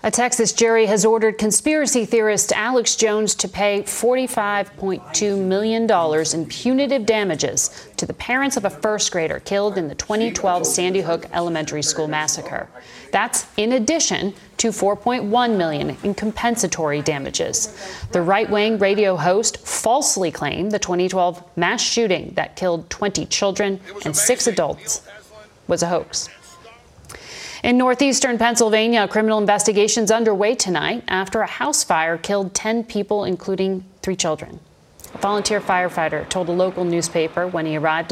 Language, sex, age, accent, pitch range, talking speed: English, female, 40-59, American, 170-220 Hz, 140 wpm